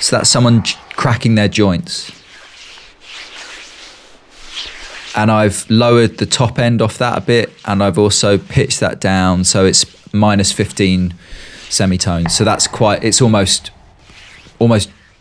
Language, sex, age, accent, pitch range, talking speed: English, male, 20-39, British, 95-115 Hz, 130 wpm